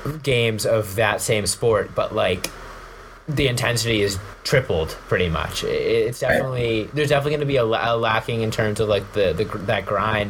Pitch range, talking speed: 95-115 Hz, 180 wpm